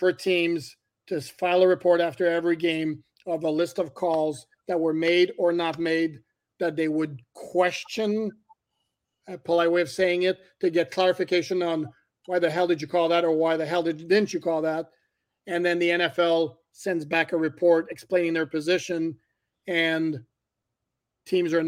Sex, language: male, English